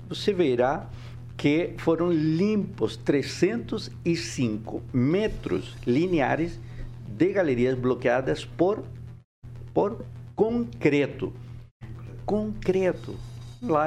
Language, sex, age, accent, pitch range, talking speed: Portuguese, male, 60-79, Brazilian, 120-145 Hz, 70 wpm